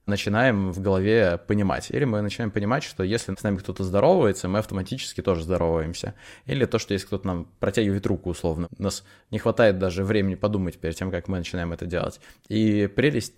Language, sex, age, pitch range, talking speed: Russian, male, 20-39, 95-110 Hz, 195 wpm